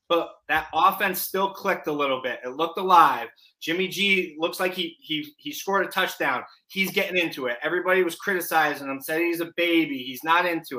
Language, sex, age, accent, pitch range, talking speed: English, male, 20-39, American, 160-200 Hz, 200 wpm